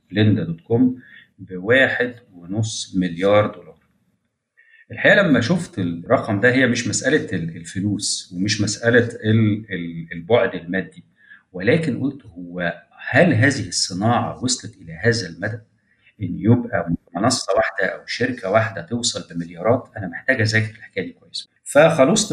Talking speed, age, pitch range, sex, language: 125 wpm, 40-59, 90-120 Hz, male, Arabic